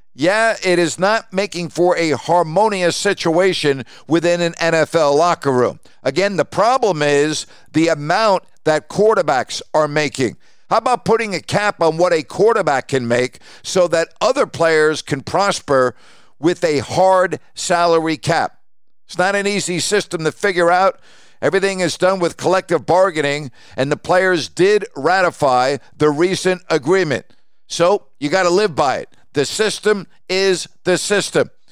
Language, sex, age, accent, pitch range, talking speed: English, male, 50-69, American, 150-185 Hz, 150 wpm